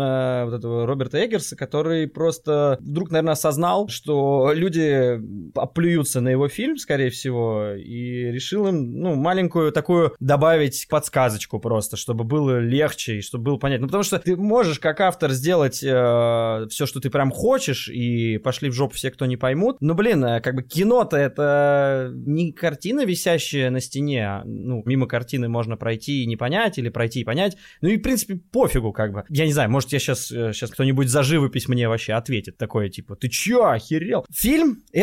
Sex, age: male, 20-39